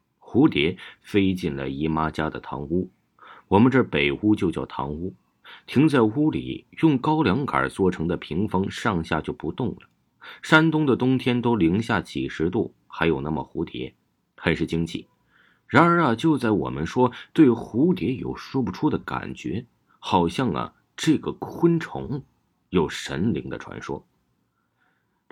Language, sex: Chinese, male